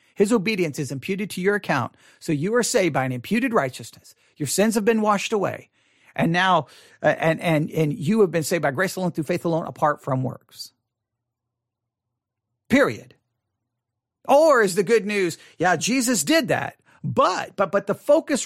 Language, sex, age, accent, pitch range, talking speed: English, male, 40-59, American, 155-225 Hz, 180 wpm